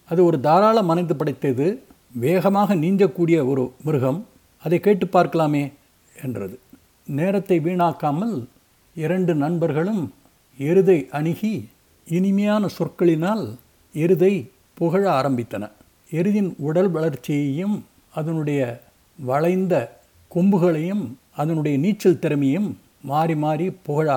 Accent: native